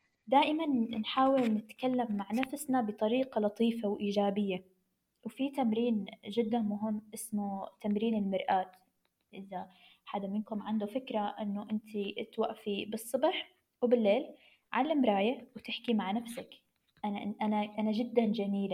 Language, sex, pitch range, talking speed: English, female, 205-245 Hz, 110 wpm